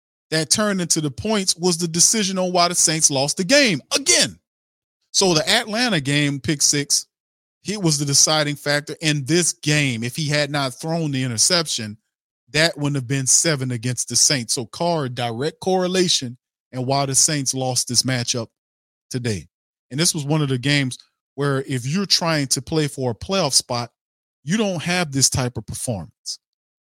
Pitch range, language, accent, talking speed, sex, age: 130-165 Hz, English, American, 180 wpm, male, 40-59